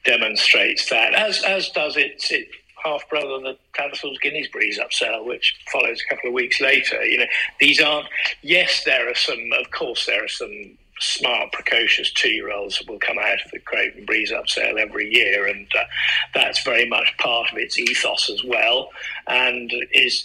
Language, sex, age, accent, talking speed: English, male, 50-69, British, 195 wpm